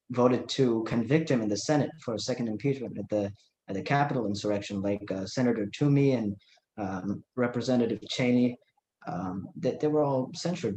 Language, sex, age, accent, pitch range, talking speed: English, male, 20-39, American, 110-140 Hz, 180 wpm